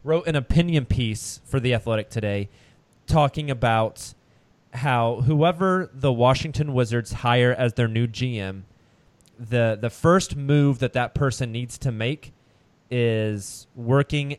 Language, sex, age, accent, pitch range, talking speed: English, male, 20-39, American, 110-140 Hz, 135 wpm